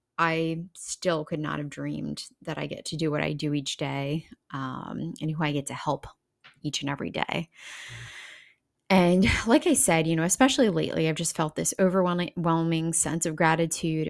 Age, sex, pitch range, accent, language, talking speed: 20-39, female, 155-190 Hz, American, English, 185 wpm